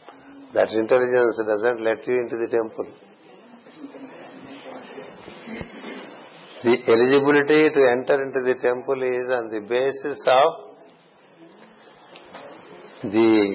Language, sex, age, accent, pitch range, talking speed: English, male, 60-79, Indian, 120-135 Hz, 95 wpm